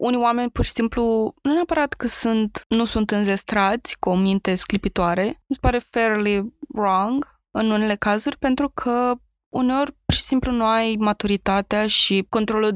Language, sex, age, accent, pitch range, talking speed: Romanian, female, 20-39, native, 195-230 Hz, 160 wpm